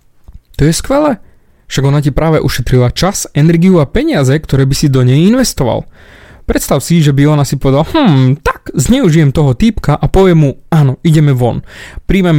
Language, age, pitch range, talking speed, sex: Slovak, 20-39, 130-170 Hz, 180 wpm, male